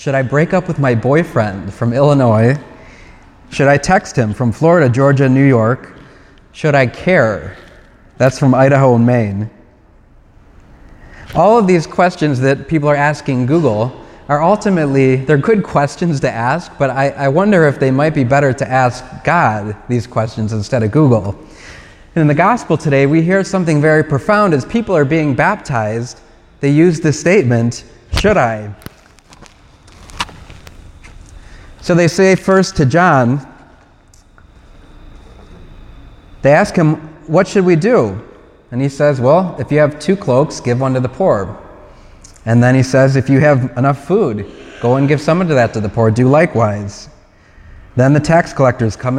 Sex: male